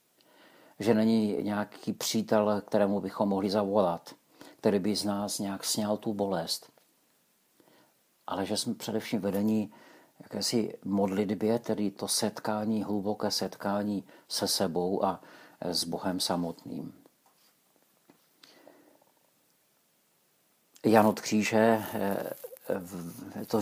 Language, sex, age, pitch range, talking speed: Czech, male, 50-69, 95-110 Hz, 95 wpm